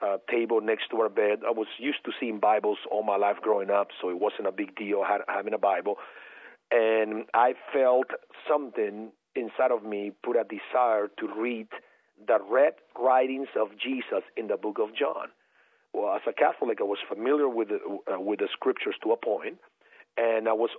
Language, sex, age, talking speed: English, male, 40-59, 195 wpm